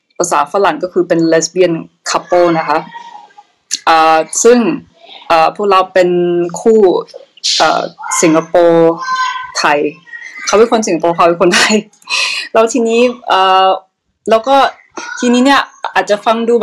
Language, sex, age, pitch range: Thai, female, 20-39, 180-260 Hz